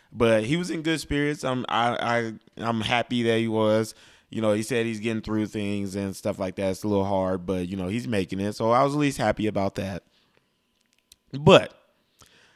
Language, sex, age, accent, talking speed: English, male, 20-39, American, 215 wpm